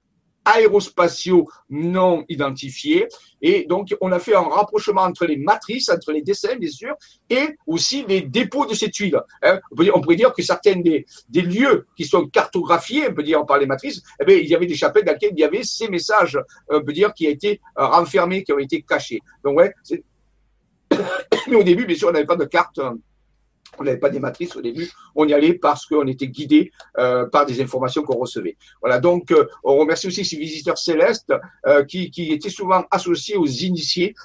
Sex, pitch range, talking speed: male, 150-230 Hz, 205 wpm